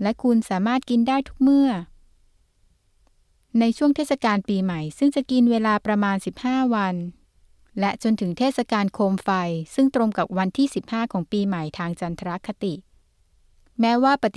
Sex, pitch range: female, 185-230 Hz